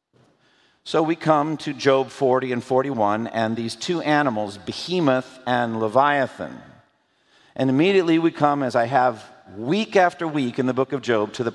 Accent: American